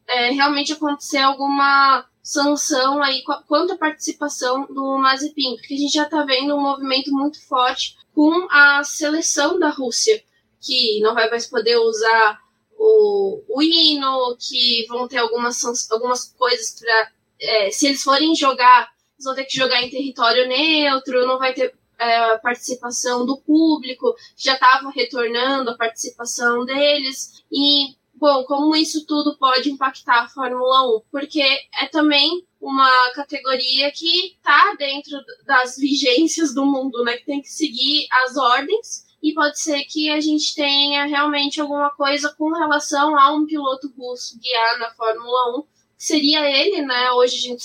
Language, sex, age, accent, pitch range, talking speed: Portuguese, female, 10-29, Brazilian, 250-300 Hz, 150 wpm